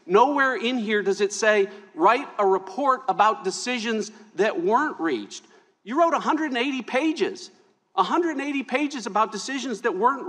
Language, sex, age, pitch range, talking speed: English, male, 50-69, 195-280 Hz, 140 wpm